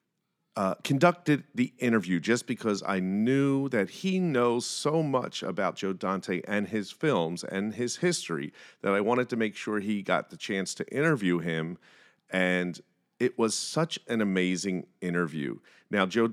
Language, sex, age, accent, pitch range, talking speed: English, male, 40-59, American, 85-115 Hz, 160 wpm